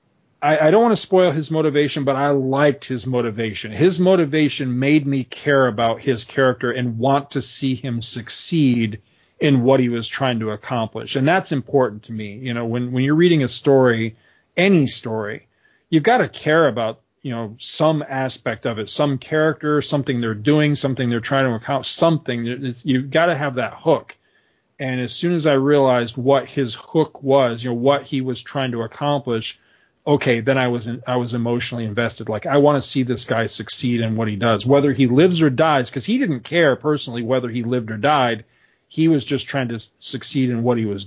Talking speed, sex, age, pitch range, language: 205 wpm, male, 40-59, 115-145 Hz, English